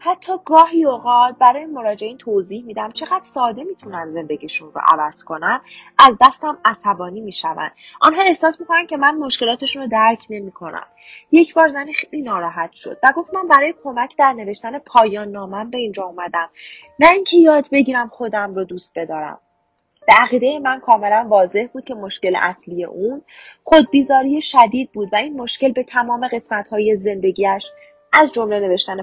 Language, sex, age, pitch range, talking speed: Persian, female, 30-49, 190-280 Hz, 160 wpm